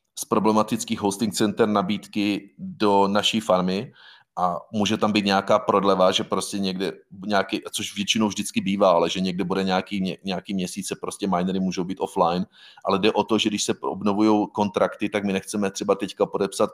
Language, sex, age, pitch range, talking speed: Czech, male, 30-49, 95-105 Hz, 175 wpm